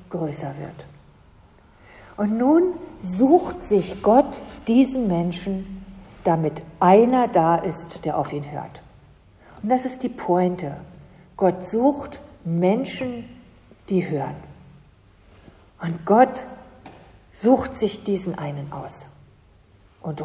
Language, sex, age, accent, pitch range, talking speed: German, female, 50-69, German, 155-215 Hz, 105 wpm